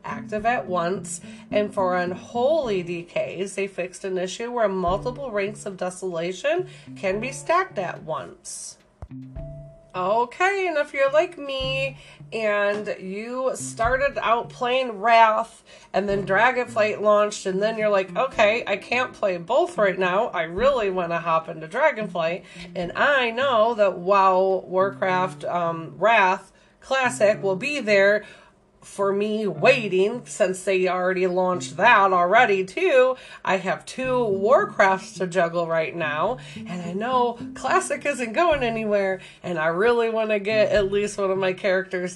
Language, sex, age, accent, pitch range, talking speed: English, female, 30-49, American, 180-230 Hz, 150 wpm